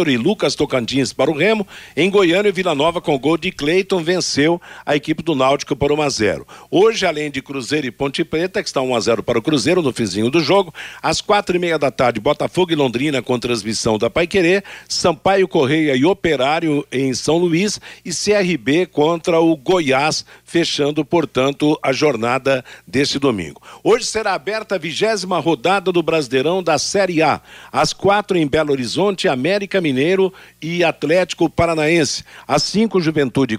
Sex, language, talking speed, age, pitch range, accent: male, Portuguese, 170 wpm, 50-69, 135-180 Hz, Brazilian